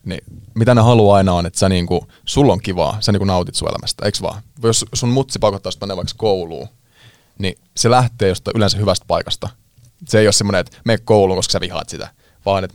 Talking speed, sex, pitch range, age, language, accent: 220 wpm, male, 95-115 Hz, 20-39, Finnish, native